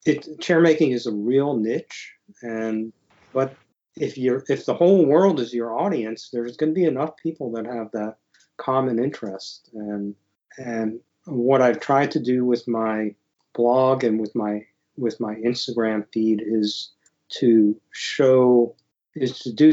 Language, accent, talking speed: English, American, 150 wpm